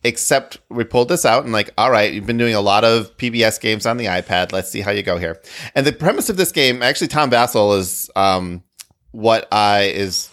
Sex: male